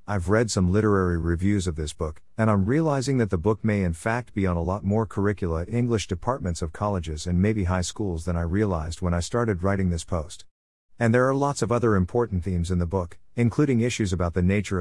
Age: 50-69